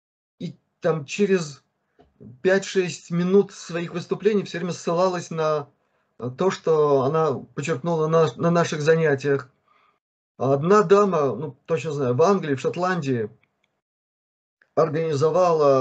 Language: Russian